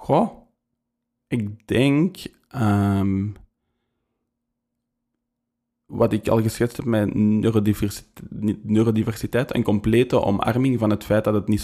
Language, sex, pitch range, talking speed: Dutch, male, 100-115 Hz, 105 wpm